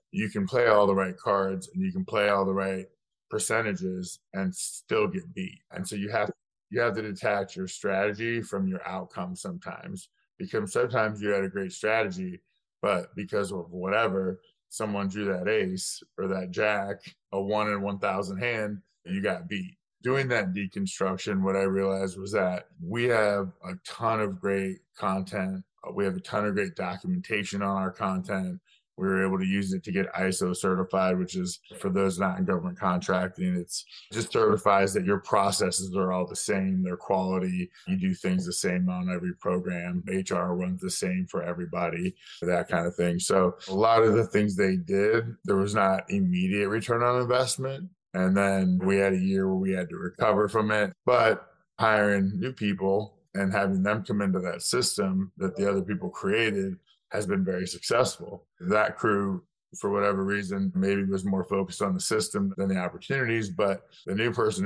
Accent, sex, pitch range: American, male, 95-115 Hz